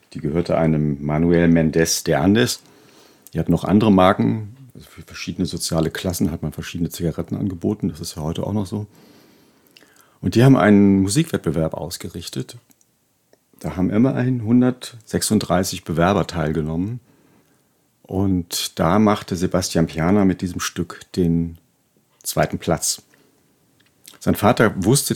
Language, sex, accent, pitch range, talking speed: German, male, German, 85-105 Hz, 130 wpm